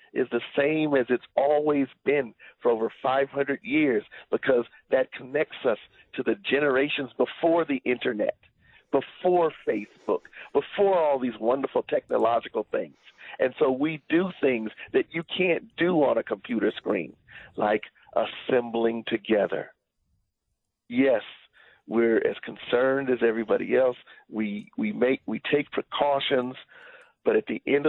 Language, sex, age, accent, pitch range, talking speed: English, male, 50-69, American, 115-170 Hz, 135 wpm